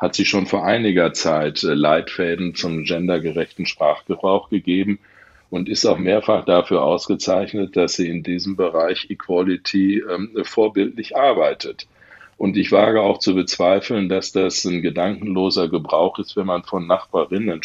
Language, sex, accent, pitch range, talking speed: German, male, German, 90-110 Hz, 145 wpm